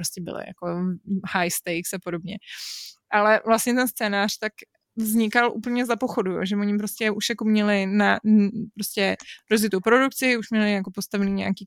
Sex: female